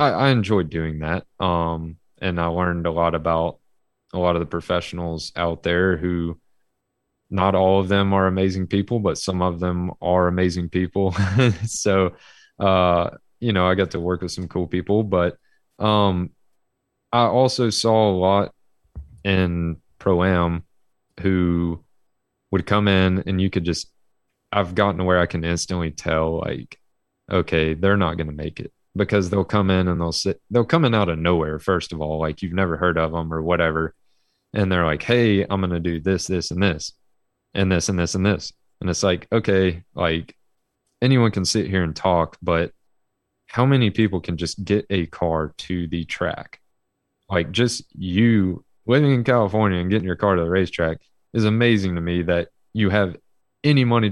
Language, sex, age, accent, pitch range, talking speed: English, male, 20-39, American, 85-105 Hz, 185 wpm